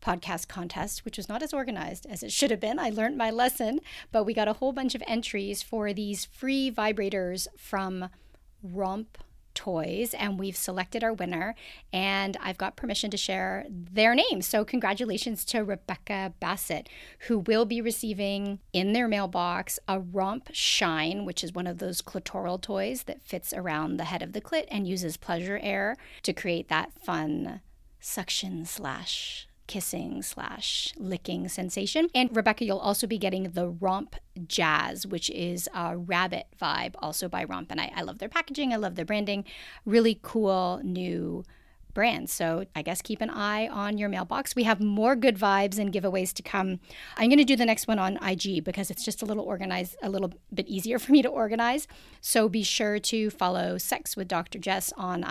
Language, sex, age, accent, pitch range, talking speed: English, female, 40-59, American, 185-225 Hz, 185 wpm